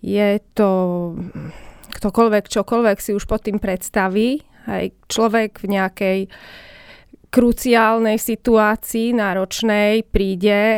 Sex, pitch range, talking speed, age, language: female, 195-225 Hz, 95 wpm, 20-39, Slovak